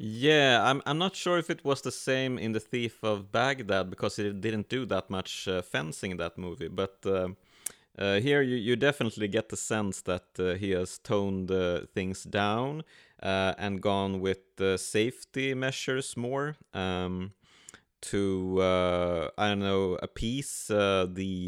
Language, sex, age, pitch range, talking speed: English, male, 30-49, 95-120 Hz, 170 wpm